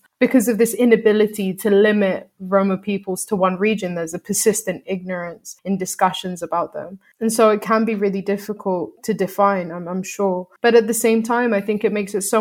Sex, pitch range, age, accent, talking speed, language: female, 185-215 Hz, 20-39, British, 205 wpm, English